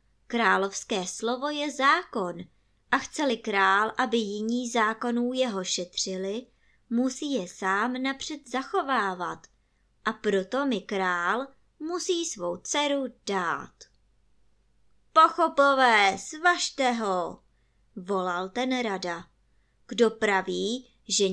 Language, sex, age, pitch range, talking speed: Czech, male, 20-39, 190-275 Hz, 95 wpm